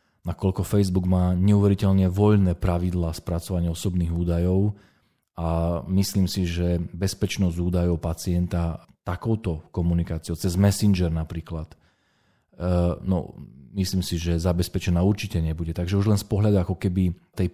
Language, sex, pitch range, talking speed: Slovak, male, 85-100 Hz, 125 wpm